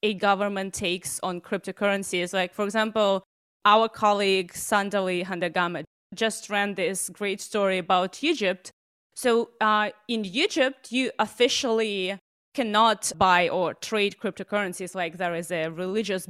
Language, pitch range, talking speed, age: English, 195-260 Hz, 130 wpm, 20-39